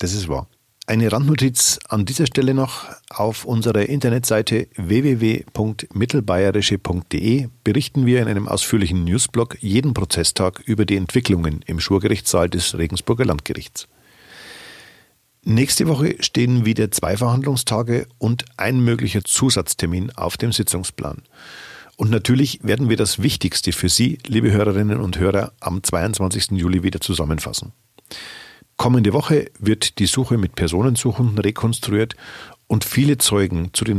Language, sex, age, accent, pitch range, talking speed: German, male, 50-69, German, 95-125 Hz, 125 wpm